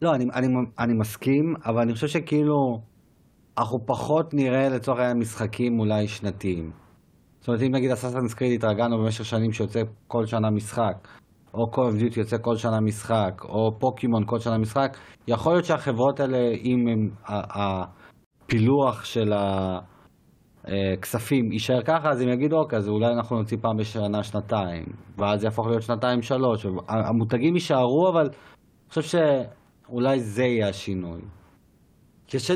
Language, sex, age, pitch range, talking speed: Hebrew, male, 30-49, 105-130 Hz, 145 wpm